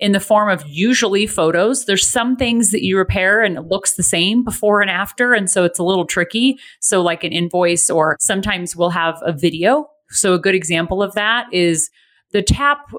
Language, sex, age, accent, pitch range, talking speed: English, female, 30-49, American, 170-215 Hz, 210 wpm